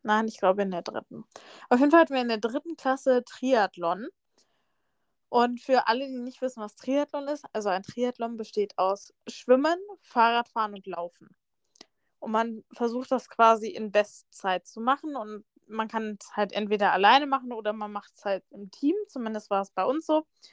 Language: German